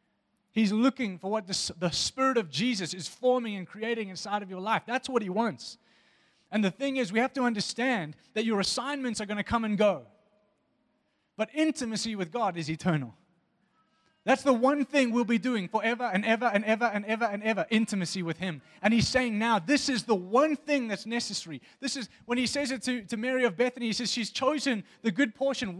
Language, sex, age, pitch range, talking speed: English, male, 20-39, 195-245 Hz, 210 wpm